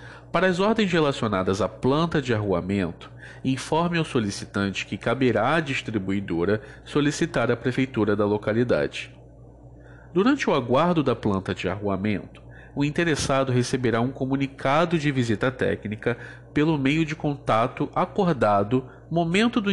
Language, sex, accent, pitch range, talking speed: Portuguese, male, Brazilian, 105-150 Hz, 130 wpm